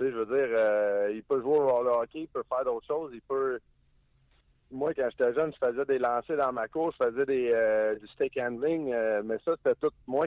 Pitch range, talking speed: 120-160 Hz, 235 wpm